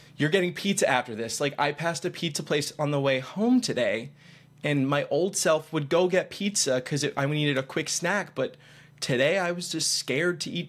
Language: English